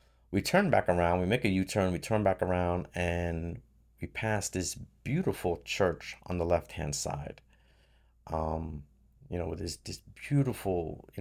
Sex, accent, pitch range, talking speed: male, American, 75-110 Hz, 160 wpm